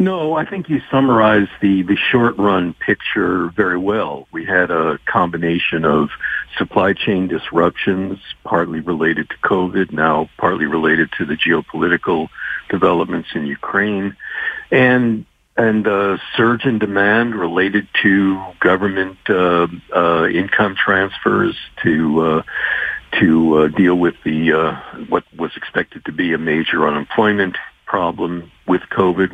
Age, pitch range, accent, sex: 50-69, 85-105 Hz, American, male